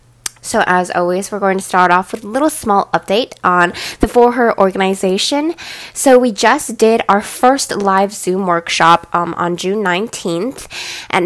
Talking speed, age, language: 170 wpm, 10-29, English